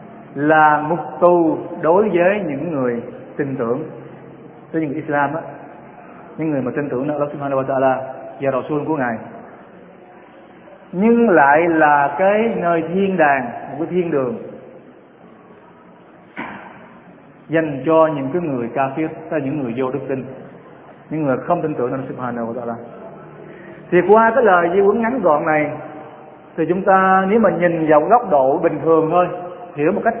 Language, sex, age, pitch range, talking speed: Vietnamese, male, 20-39, 150-200 Hz, 155 wpm